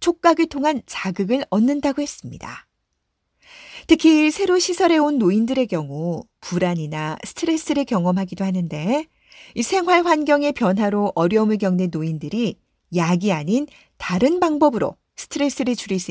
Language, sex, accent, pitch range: Korean, female, native, 185-295 Hz